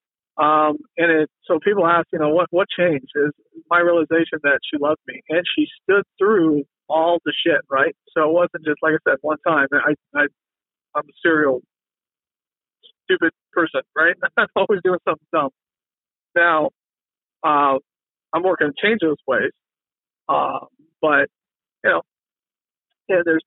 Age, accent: 50-69, American